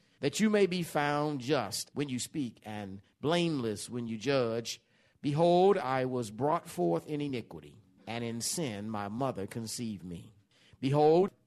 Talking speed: 150 wpm